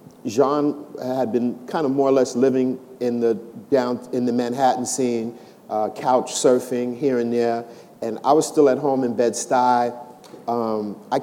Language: English